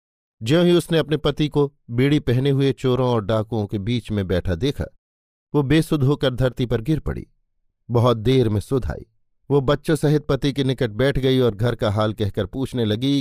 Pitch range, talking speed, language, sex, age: 100-145 Hz, 190 wpm, Hindi, male, 50-69